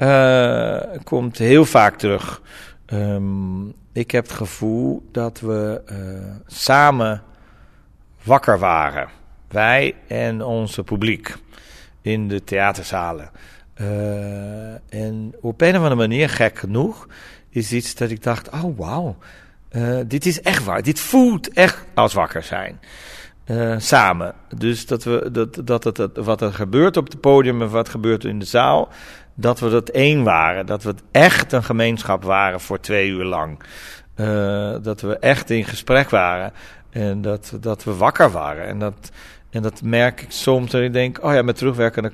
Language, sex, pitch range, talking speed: Dutch, male, 105-125 Hz, 160 wpm